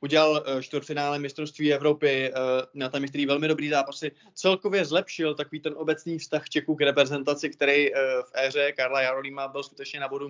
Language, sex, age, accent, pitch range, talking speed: Czech, male, 20-39, native, 140-165 Hz, 165 wpm